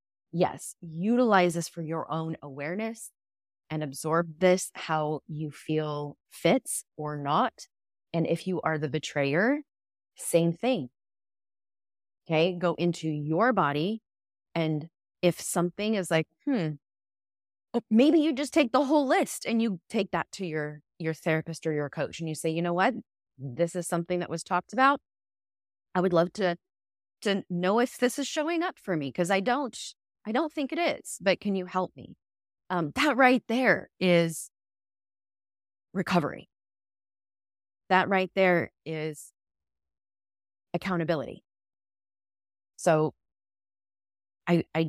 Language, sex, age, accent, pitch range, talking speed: English, female, 30-49, American, 145-190 Hz, 140 wpm